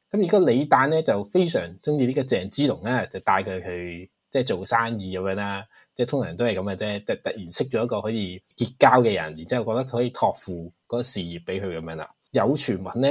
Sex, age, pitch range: male, 20-39, 95-135 Hz